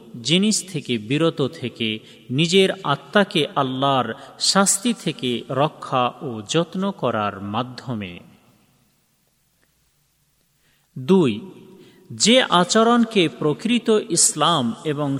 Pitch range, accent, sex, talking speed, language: 125-185 Hz, native, male, 65 wpm, Bengali